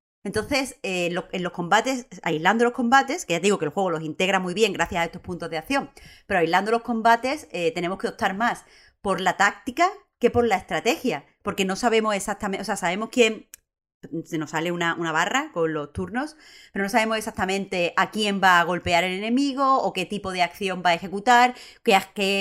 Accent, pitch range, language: Spanish, 175-230 Hz, Spanish